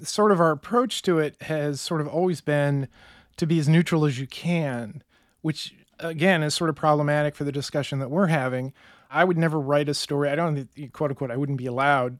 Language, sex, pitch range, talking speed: English, male, 130-160 Hz, 215 wpm